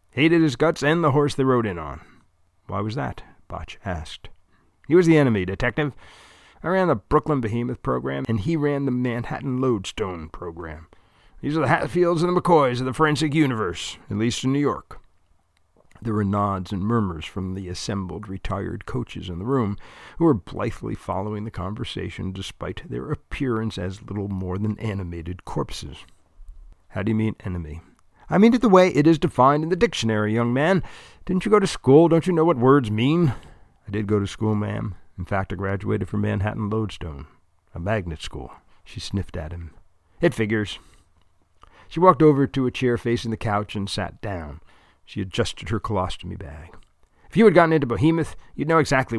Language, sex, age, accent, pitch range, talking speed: English, male, 50-69, American, 90-130 Hz, 190 wpm